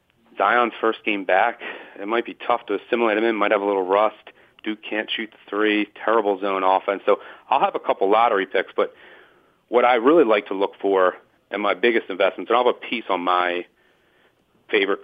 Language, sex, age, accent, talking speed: English, male, 40-59, American, 210 wpm